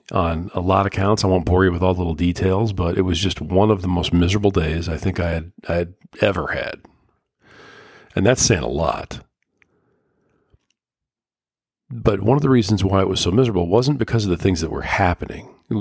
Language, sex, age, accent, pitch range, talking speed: English, male, 40-59, American, 85-100 Hz, 215 wpm